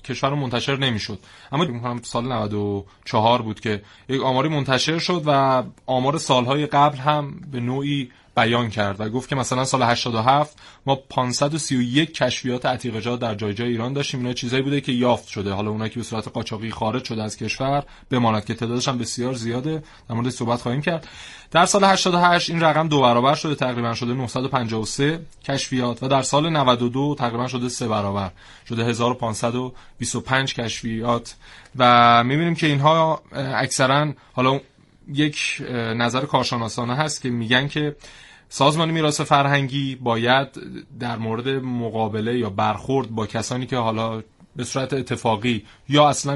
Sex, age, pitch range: male, 30-49, 115-140 Hz